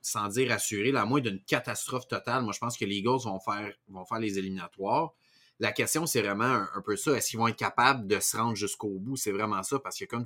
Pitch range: 105-130 Hz